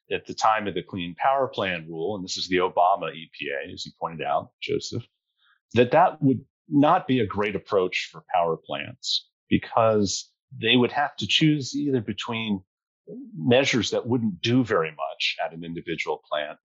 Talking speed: 175 wpm